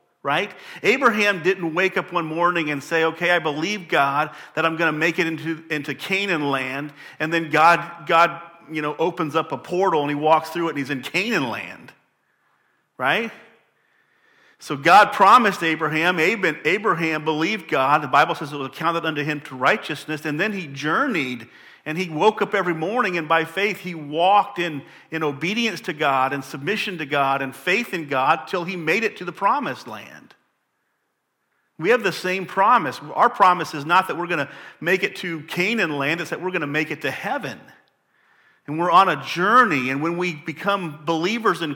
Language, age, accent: English, 50-69, American